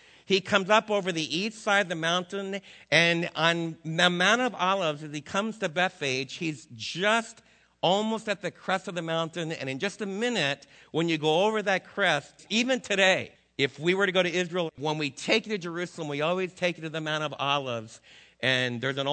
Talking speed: 215 wpm